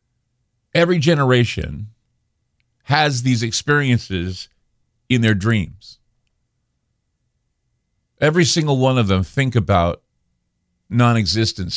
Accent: American